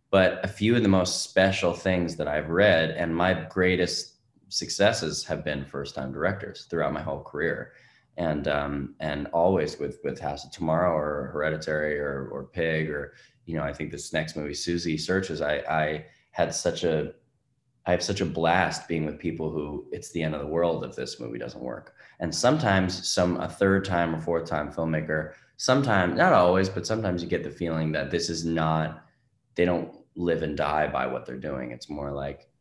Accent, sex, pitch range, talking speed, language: American, male, 80-100 Hz, 200 wpm, English